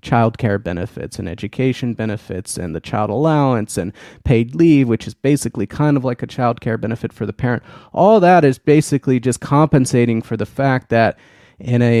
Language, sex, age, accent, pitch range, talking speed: English, male, 30-49, American, 110-140 Hz, 190 wpm